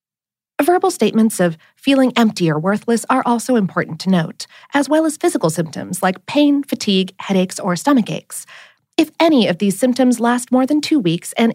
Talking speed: 180 wpm